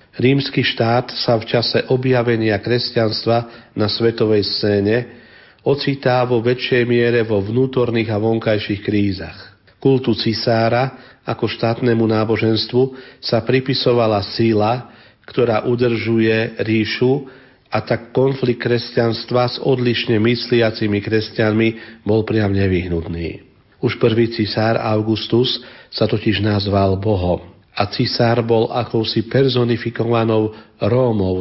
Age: 50-69